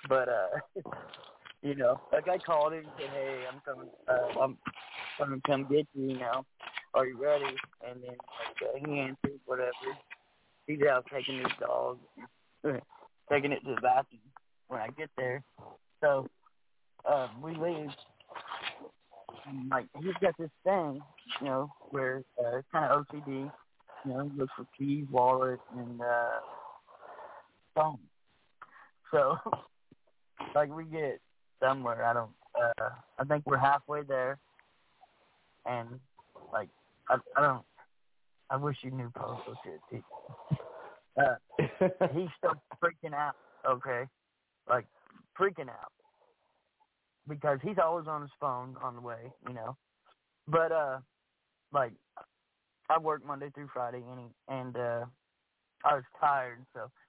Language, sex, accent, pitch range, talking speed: English, male, American, 125-150 Hz, 140 wpm